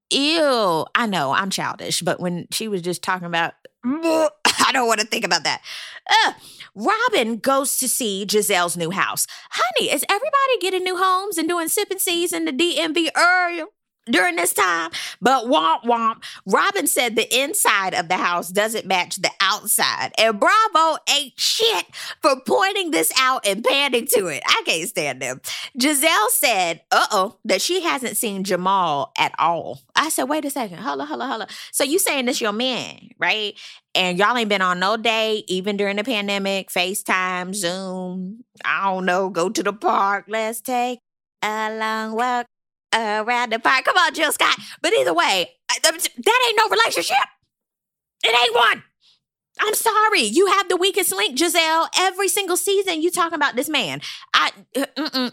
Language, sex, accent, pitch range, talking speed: English, female, American, 200-330 Hz, 175 wpm